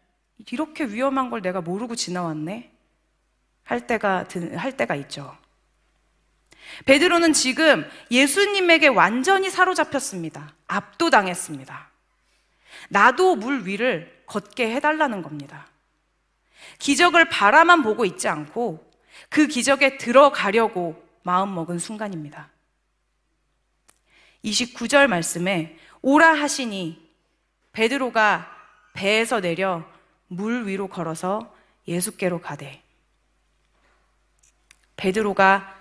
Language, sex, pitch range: Korean, female, 175-275 Hz